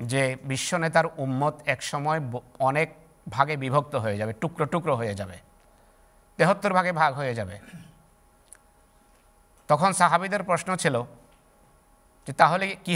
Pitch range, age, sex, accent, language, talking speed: 125-165 Hz, 50-69, male, native, Bengali, 125 wpm